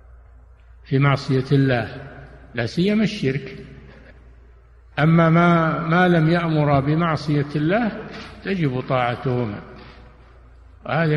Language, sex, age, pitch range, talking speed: Arabic, male, 60-79, 130-160 Hz, 85 wpm